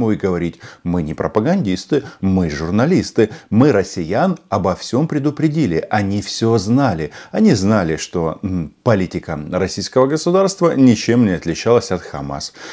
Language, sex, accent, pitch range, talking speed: Russian, male, native, 90-125 Hz, 125 wpm